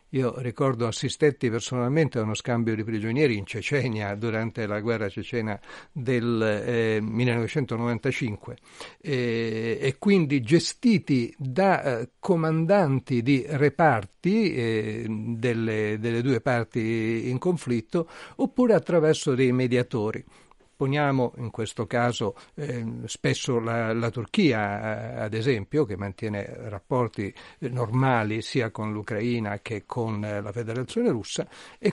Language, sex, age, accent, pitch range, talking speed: Italian, male, 60-79, native, 110-140 Hz, 120 wpm